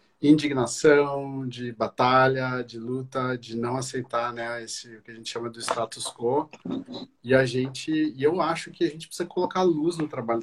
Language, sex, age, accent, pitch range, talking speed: Portuguese, male, 40-59, Brazilian, 115-140 Hz, 185 wpm